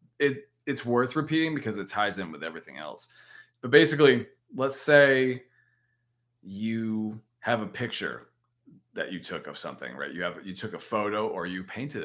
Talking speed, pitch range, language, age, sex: 170 wpm, 105-125 Hz, English, 30-49, male